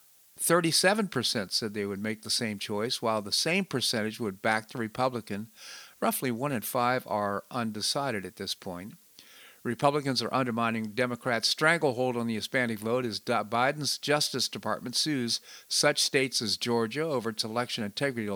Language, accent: English, American